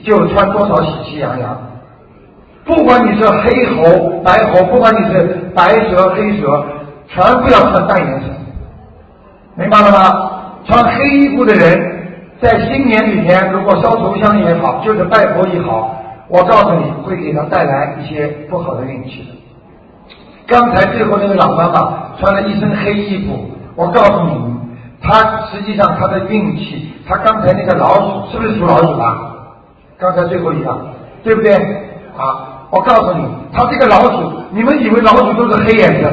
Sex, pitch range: male, 170-220 Hz